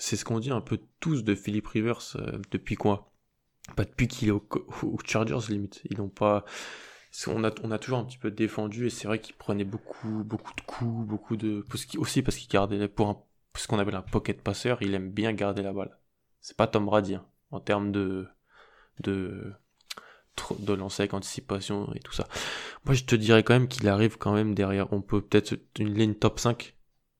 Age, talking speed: 20-39, 215 wpm